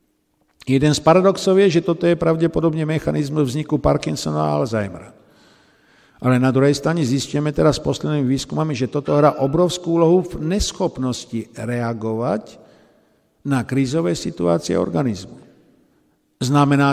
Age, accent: 60-79, native